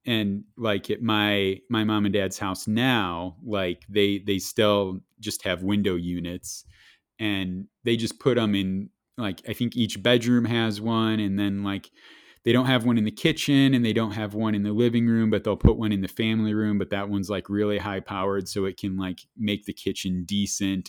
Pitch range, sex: 100-125 Hz, male